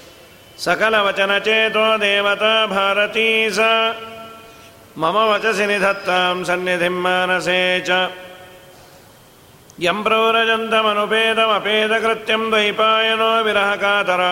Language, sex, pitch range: Kannada, male, 180-205 Hz